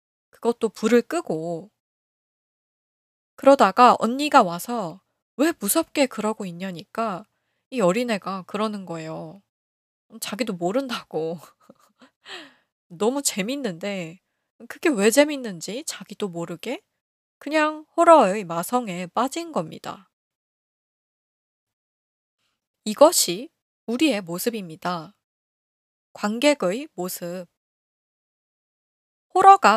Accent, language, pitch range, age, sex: native, Korean, 180-275 Hz, 20-39, female